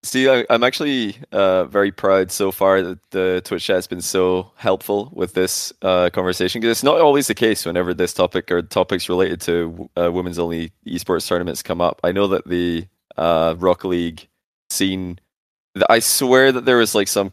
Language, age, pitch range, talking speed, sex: English, 20-39, 85-95 Hz, 195 wpm, male